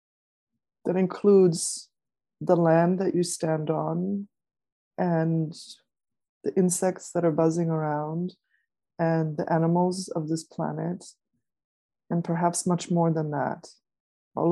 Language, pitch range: English, 160-180 Hz